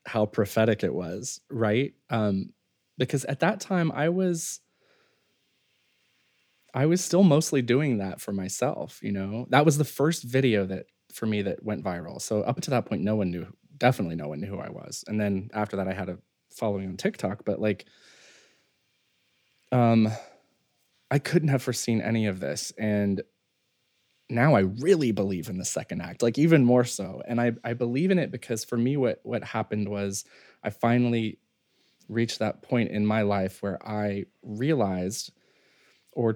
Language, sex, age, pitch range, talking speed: English, male, 20-39, 100-125 Hz, 175 wpm